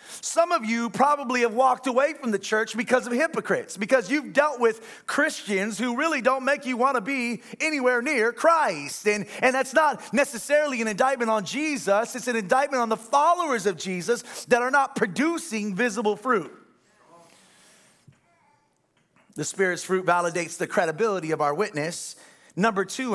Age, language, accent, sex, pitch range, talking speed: 30-49, English, American, male, 190-255 Hz, 165 wpm